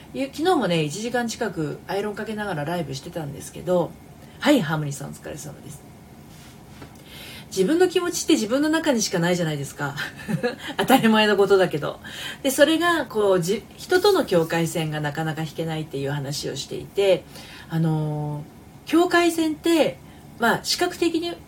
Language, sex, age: Japanese, female, 40-59